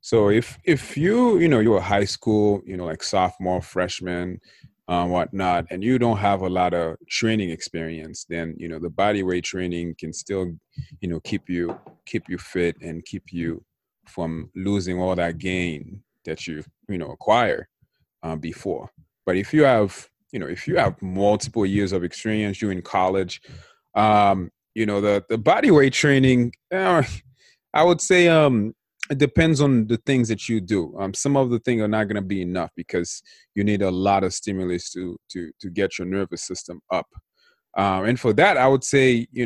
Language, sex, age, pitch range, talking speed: English, male, 30-49, 90-120 Hz, 195 wpm